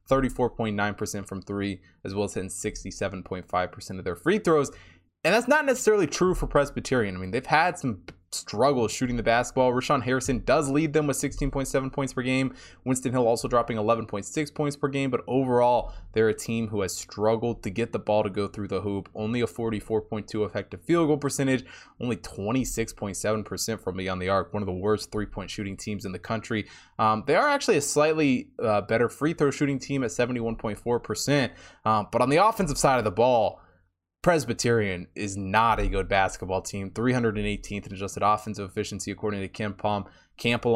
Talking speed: 185 wpm